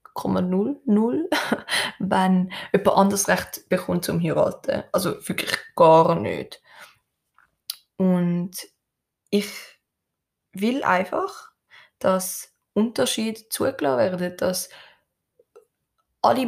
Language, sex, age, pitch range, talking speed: German, female, 20-39, 185-225 Hz, 85 wpm